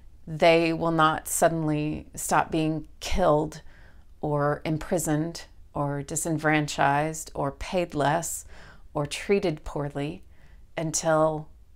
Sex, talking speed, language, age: female, 90 wpm, English, 30-49